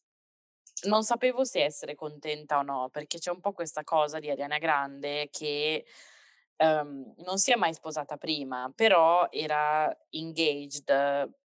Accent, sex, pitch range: native, female, 140-175 Hz